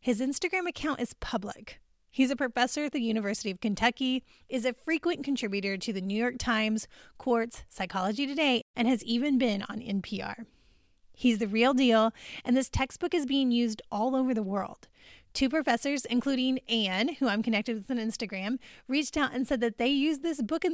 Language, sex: English, female